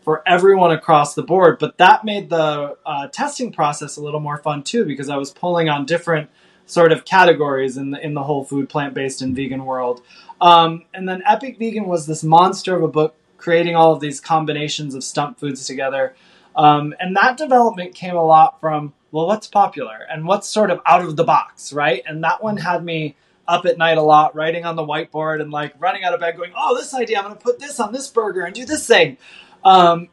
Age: 20-39